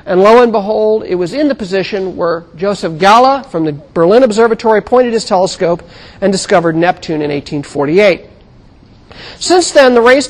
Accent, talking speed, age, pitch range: American, 165 wpm, 50-69, 175-245 Hz